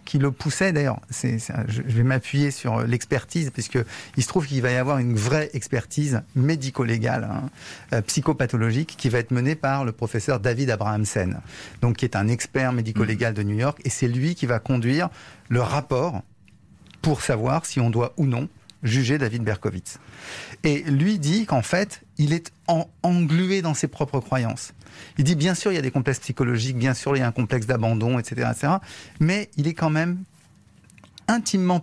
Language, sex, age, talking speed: French, male, 40-59, 180 wpm